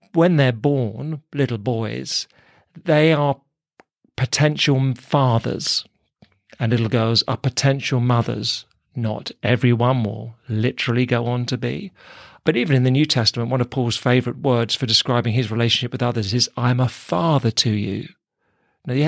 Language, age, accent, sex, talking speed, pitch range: English, 40-59, British, male, 150 wpm, 115-145 Hz